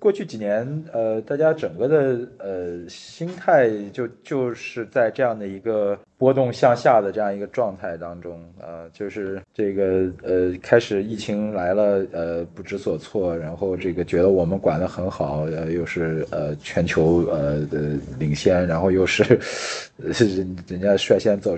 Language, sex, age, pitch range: Chinese, male, 20-39, 85-115 Hz